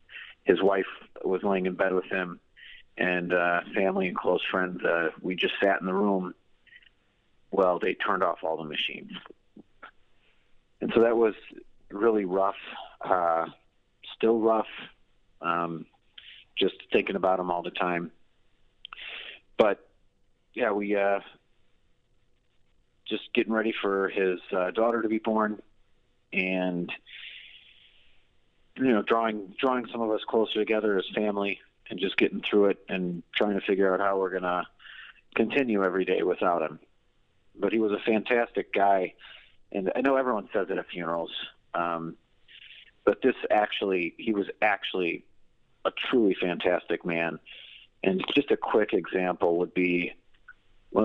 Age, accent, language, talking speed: 40-59, American, English, 145 wpm